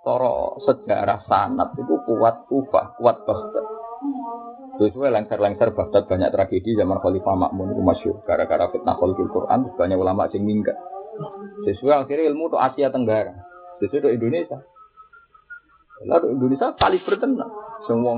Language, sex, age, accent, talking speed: Indonesian, male, 30-49, native, 145 wpm